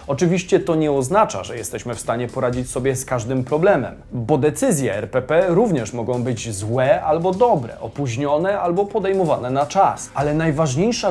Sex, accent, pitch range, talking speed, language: male, native, 135-195 Hz, 155 wpm, Polish